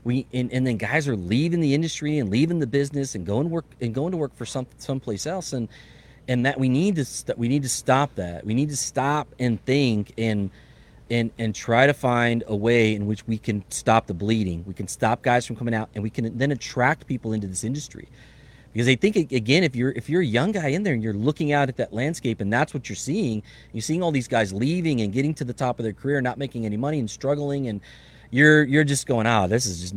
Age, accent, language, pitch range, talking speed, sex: 30-49, American, English, 110-145 Hz, 255 wpm, male